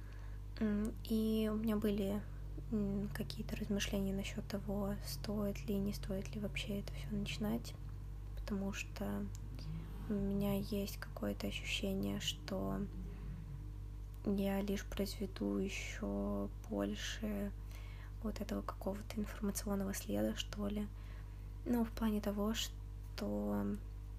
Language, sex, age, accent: Russian, female, 20-39, native